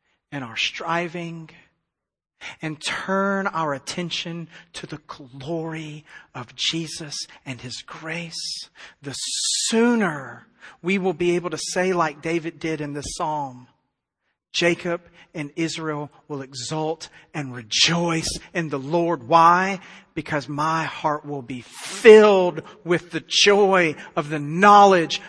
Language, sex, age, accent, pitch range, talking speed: English, male, 40-59, American, 155-195 Hz, 125 wpm